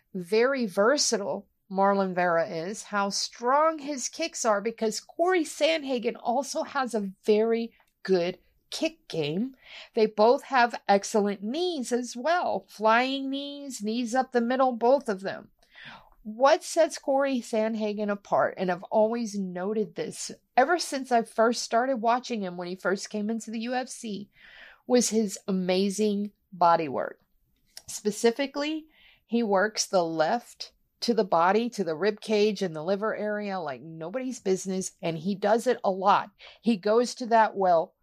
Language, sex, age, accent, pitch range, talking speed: English, female, 50-69, American, 195-255 Hz, 150 wpm